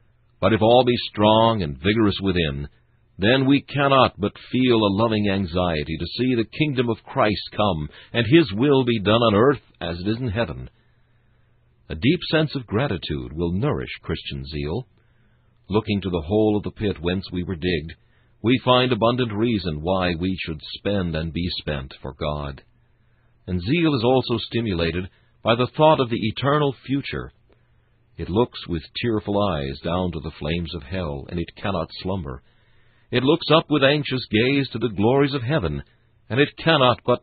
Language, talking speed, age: English, 175 wpm, 60-79